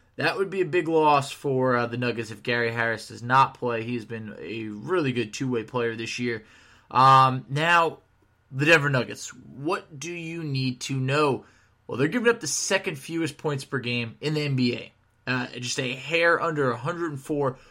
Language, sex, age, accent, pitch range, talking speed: English, male, 20-39, American, 120-155 Hz, 185 wpm